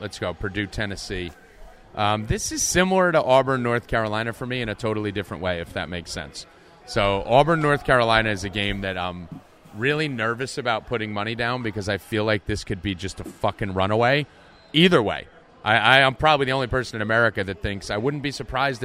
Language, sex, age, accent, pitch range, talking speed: English, male, 30-49, American, 105-135 Hz, 205 wpm